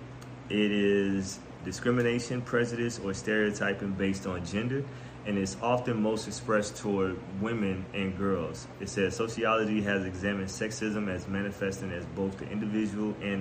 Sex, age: male, 20-39